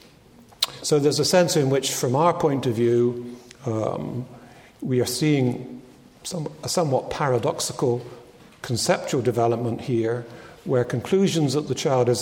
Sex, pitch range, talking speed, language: male, 120-145 Hz, 135 wpm, English